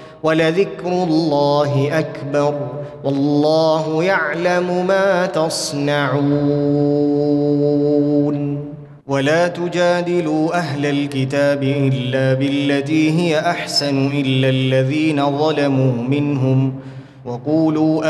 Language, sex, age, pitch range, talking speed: Arabic, male, 20-39, 135-160 Hz, 65 wpm